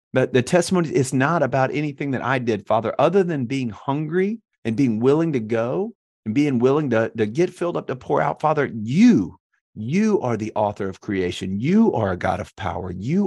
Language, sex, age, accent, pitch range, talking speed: English, male, 40-59, American, 100-130 Hz, 210 wpm